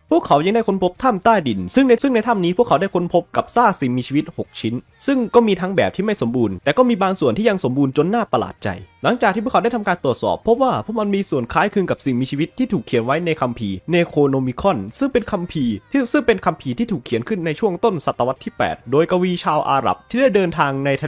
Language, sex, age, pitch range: Thai, male, 20-39, 140-225 Hz